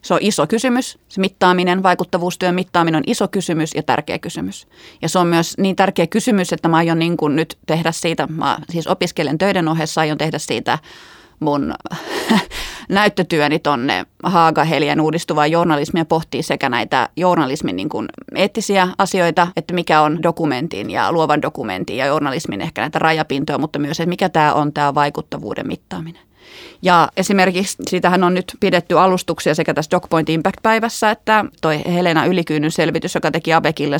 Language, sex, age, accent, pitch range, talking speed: Finnish, female, 30-49, native, 150-180 Hz, 155 wpm